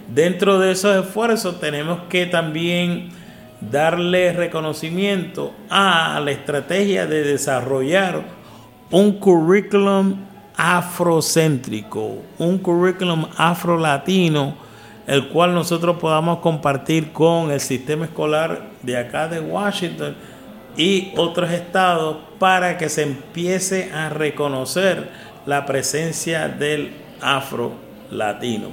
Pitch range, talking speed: 150-185 Hz, 100 wpm